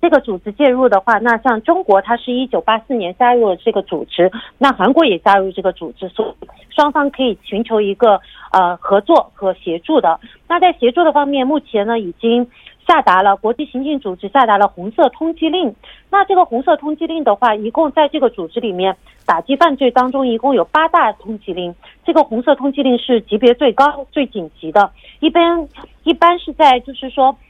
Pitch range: 200-285 Hz